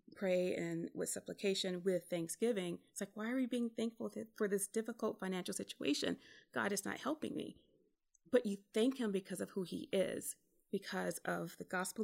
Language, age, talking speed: English, 30-49, 180 wpm